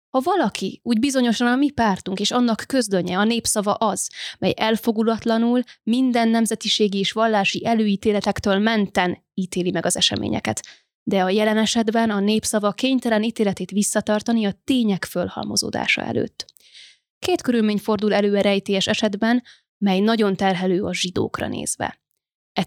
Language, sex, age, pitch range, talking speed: Hungarian, female, 20-39, 200-230 Hz, 130 wpm